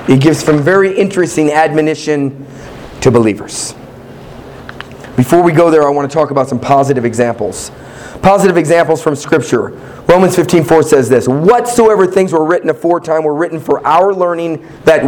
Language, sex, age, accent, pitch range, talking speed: English, male, 40-59, American, 140-190 Hz, 160 wpm